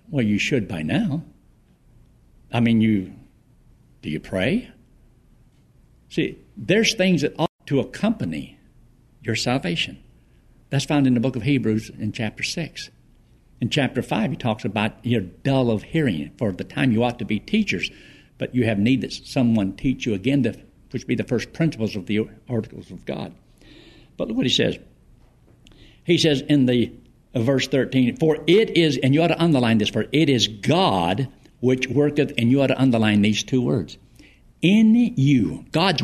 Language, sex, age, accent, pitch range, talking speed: English, male, 60-79, American, 120-170 Hz, 175 wpm